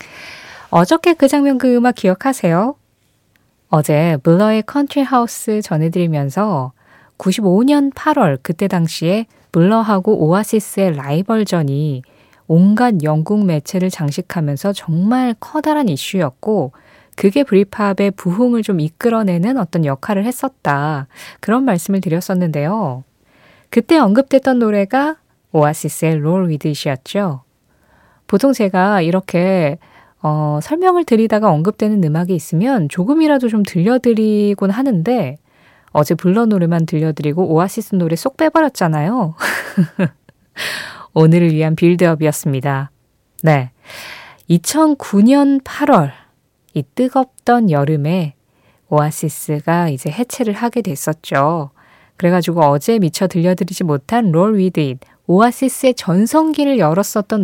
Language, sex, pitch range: Korean, female, 155-225 Hz